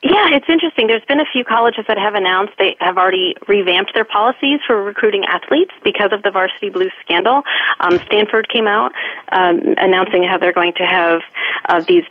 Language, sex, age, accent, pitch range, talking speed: English, female, 30-49, American, 175-225 Hz, 195 wpm